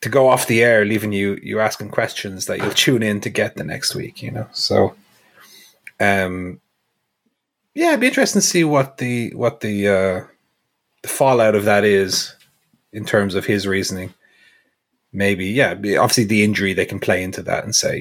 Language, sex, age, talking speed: English, male, 30-49, 185 wpm